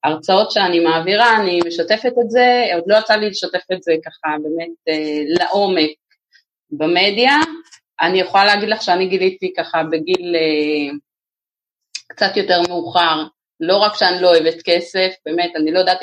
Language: Hebrew